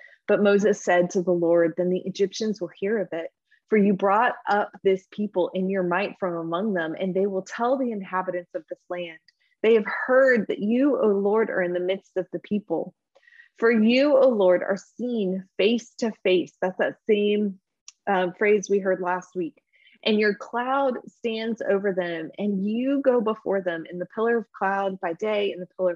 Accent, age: American, 20-39